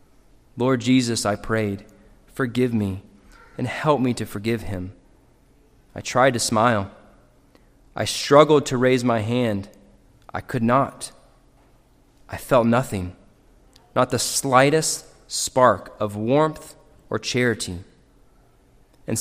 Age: 20-39